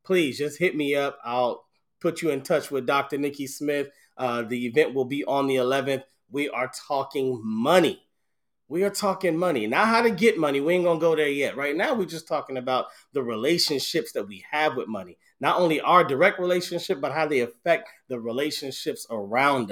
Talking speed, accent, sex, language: 200 wpm, American, male, English